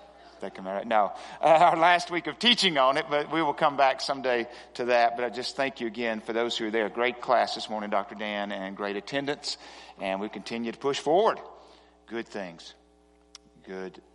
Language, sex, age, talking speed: English, male, 40-59, 210 wpm